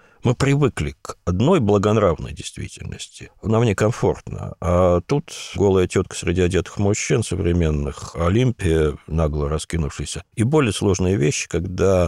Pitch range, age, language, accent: 85-105 Hz, 50-69, Russian, native